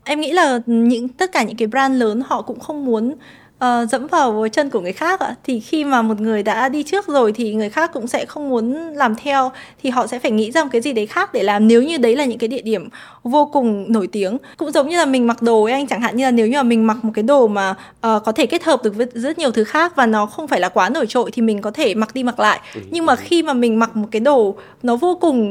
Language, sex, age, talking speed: Vietnamese, female, 20-39, 290 wpm